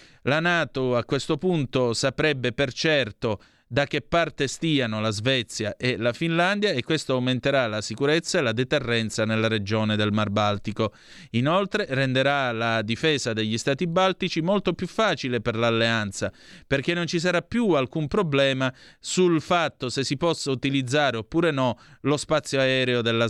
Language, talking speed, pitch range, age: Italian, 155 wpm, 115-155 Hz, 30-49